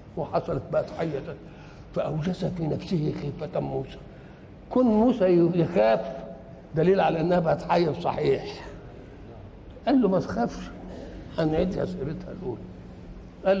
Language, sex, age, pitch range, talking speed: Arabic, male, 60-79, 155-200 Hz, 115 wpm